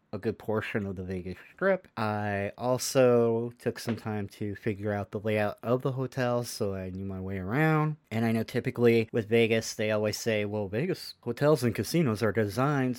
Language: English